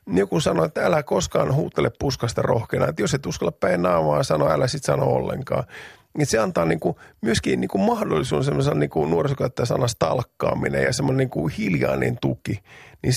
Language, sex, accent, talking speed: Finnish, male, native, 165 wpm